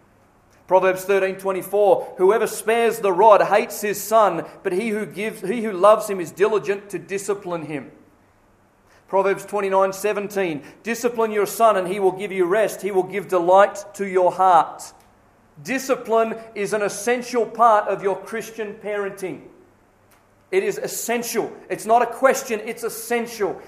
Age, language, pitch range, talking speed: 40-59, English, 185-240 Hz, 145 wpm